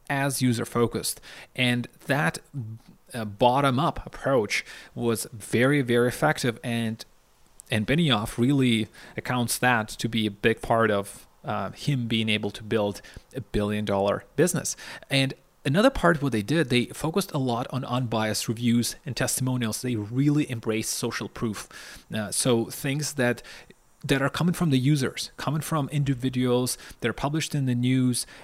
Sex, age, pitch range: male, 30-49, 115-140 Hz